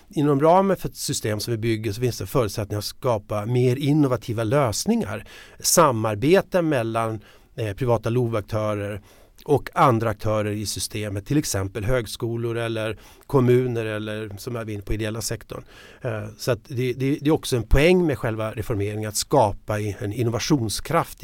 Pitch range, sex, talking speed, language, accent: 110-135 Hz, male, 145 wpm, Swedish, native